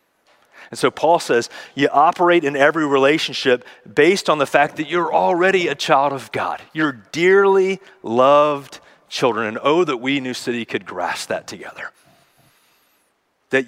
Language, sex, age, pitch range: English, male, 30-49, 125-155 Hz